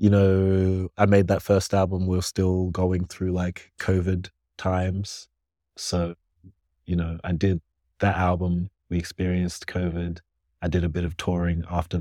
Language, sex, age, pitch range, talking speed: English, male, 30-49, 85-95 Hz, 160 wpm